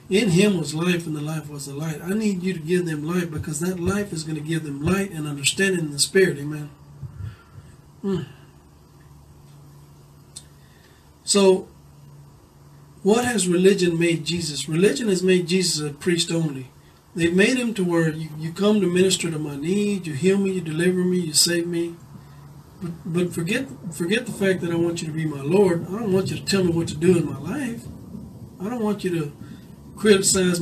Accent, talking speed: American, 195 wpm